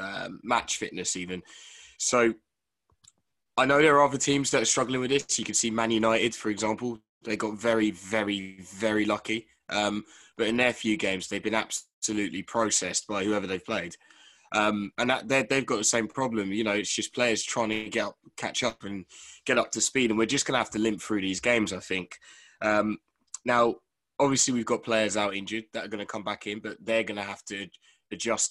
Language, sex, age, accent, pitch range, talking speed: English, male, 10-29, British, 100-115 Hz, 215 wpm